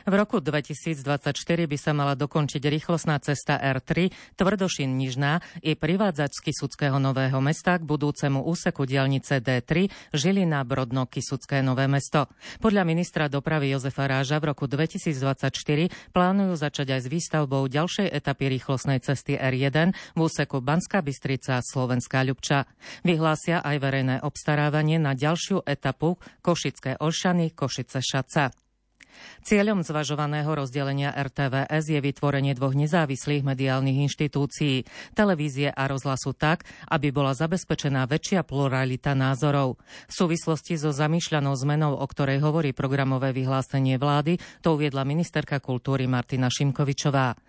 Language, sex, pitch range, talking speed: Slovak, female, 135-160 Hz, 120 wpm